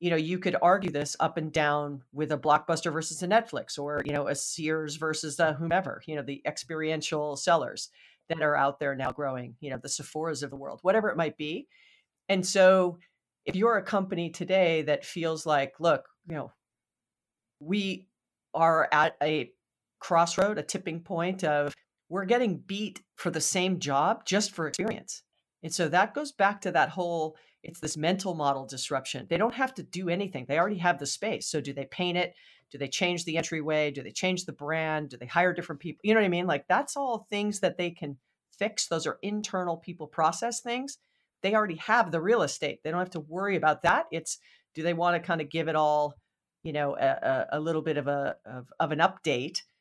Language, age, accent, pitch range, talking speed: English, 40-59, American, 150-185 Hz, 210 wpm